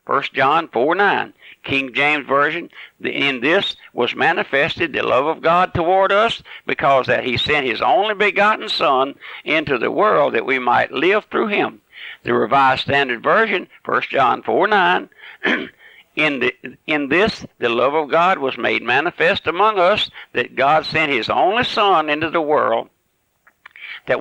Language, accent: English, American